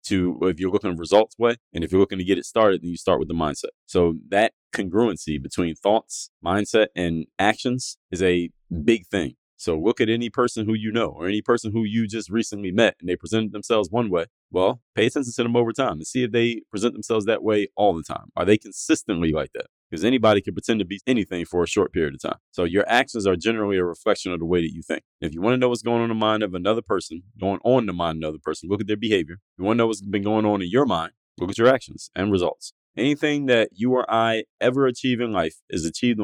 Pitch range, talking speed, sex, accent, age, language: 90-115 Hz, 255 wpm, male, American, 30-49, English